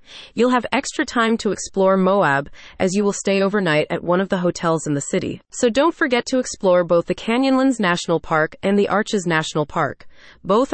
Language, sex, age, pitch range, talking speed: English, female, 30-49, 170-240 Hz, 200 wpm